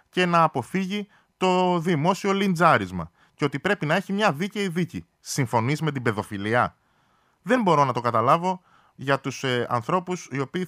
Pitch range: 120-175 Hz